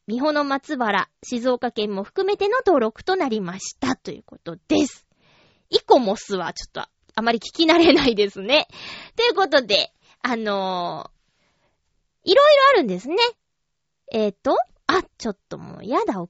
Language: Japanese